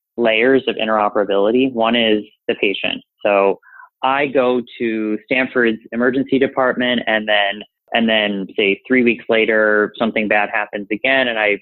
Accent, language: American, English